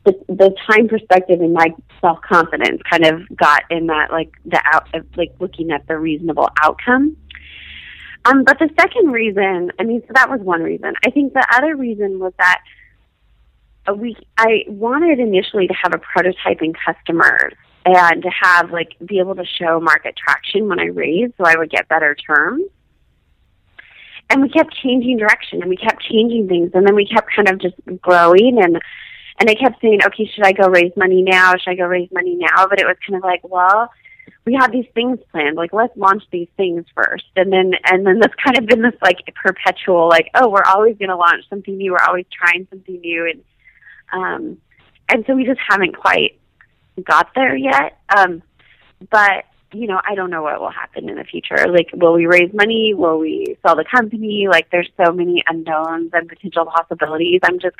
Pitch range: 170-220 Hz